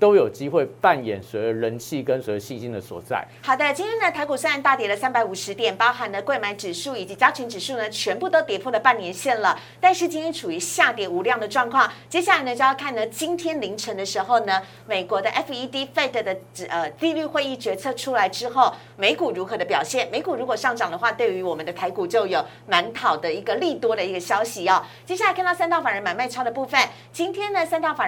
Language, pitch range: Chinese, 220-320 Hz